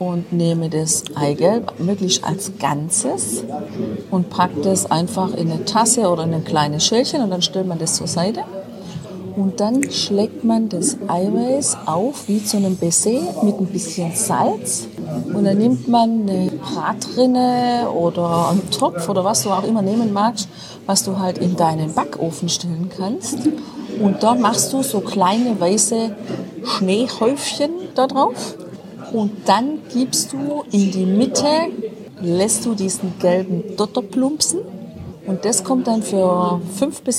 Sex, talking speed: female, 155 wpm